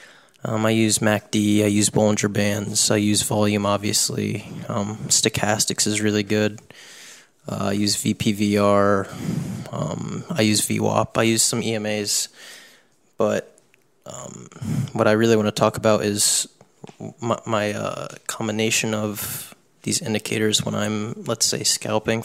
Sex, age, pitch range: male, 20-39, 105-115 Hz